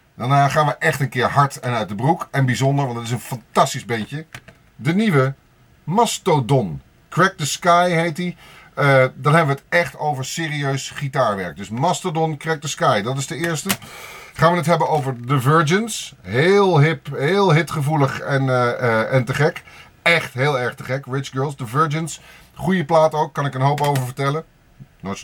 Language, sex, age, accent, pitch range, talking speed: Dutch, male, 30-49, Dutch, 130-170 Hz, 195 wpm